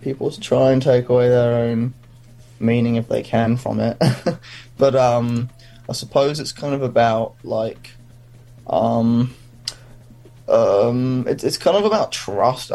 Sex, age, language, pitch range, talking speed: male, 10-29, English, 115-125 Hz, 145 wpm